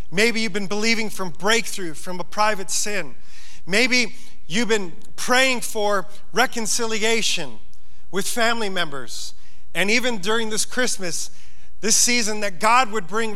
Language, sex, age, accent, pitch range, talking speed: English, male, 40-59, American, 170-215 Hz, 135 wpm